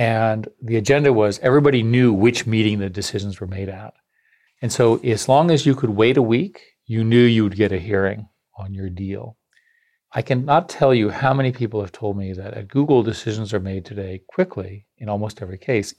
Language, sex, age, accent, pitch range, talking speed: English, male, 40-59, American, 100-130 Hz, 205 wpm